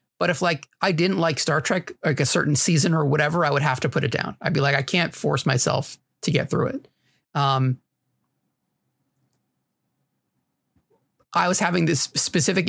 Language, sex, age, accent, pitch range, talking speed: English, male, 30-49, American, 130-165 Hz, 180 wpm